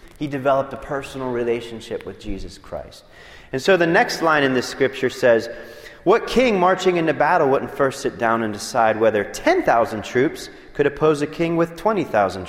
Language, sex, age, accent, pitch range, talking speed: English, male, 30-49, American, 115-180 Hz, 180 wpm